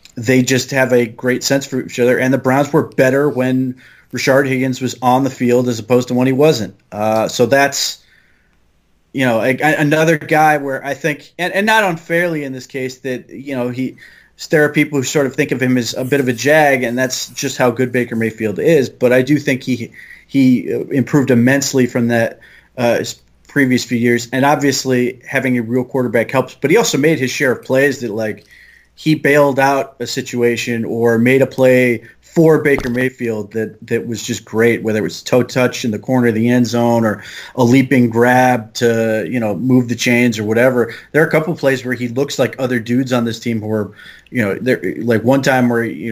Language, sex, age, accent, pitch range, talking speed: English, male, 30-49, American, 120-135 Hz, 220 wpm